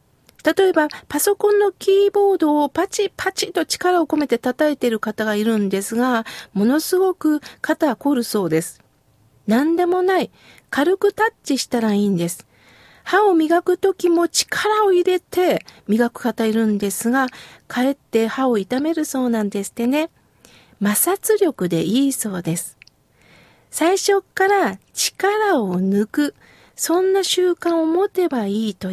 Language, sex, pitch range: Japanese, female, 225-365 Hz